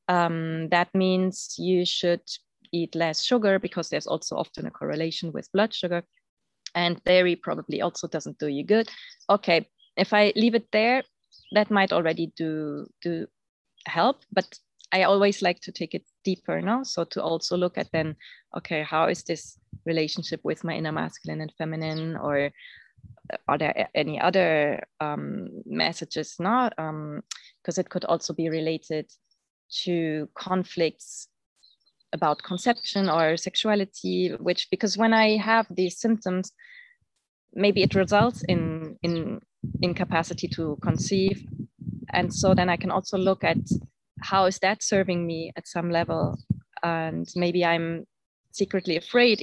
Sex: female